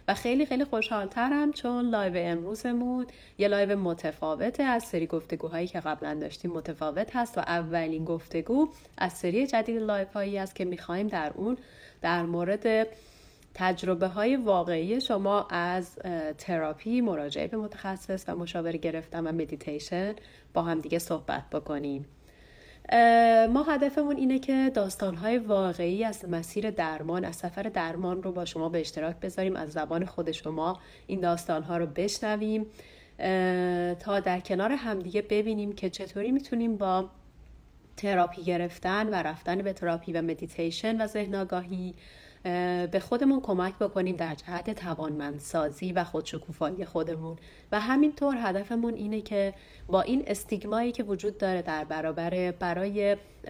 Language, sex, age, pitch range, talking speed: Persian, female, 30-49, 170-215 Hz, 135 wpm